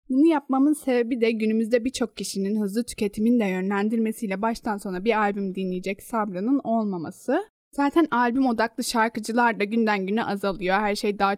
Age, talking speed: 10-29, 155 wpm